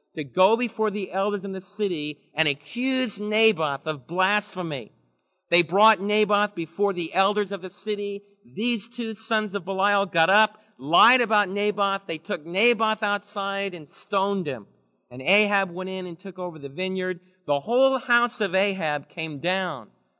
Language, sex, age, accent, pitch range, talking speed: English, male, 50-69, American, 165-210 Hz, 165 wpm